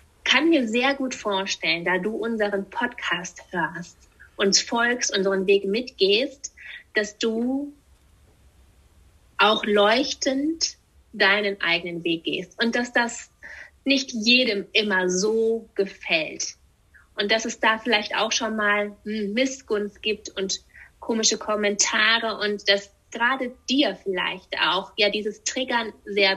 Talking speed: 125 wpm